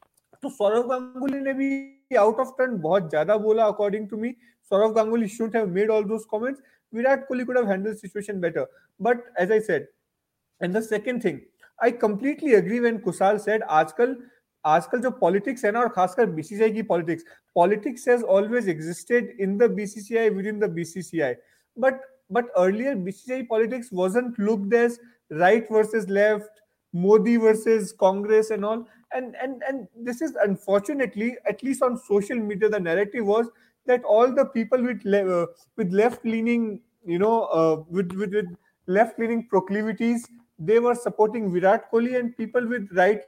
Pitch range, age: 205-240 Hz, 30-49